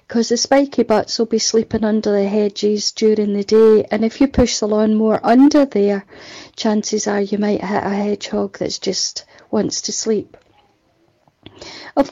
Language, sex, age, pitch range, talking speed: English, female, 40-59, 210-235 Hz, 175 wpm